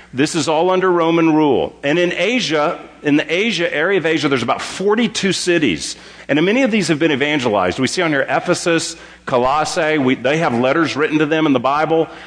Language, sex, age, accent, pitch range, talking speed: English, male, 40-59, American, 135-170 Hz, 200 wpm